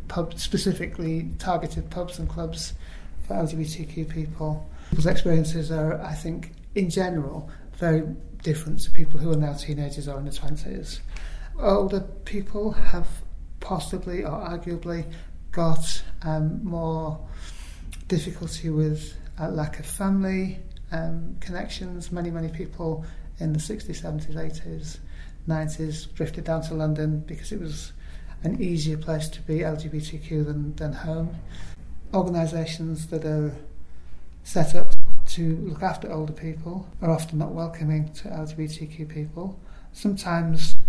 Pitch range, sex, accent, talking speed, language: 155-175 Hz, male, British, 130 wpm, English